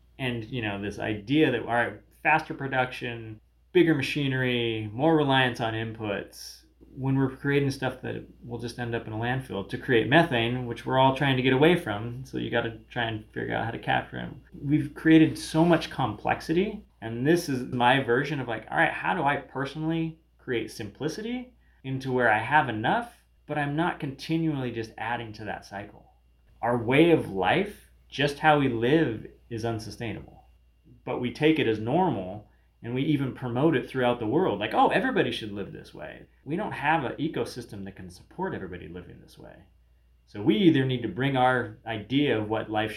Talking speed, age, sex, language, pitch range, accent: 195 wpm, 20-39, male, English, 110-140 Hz, American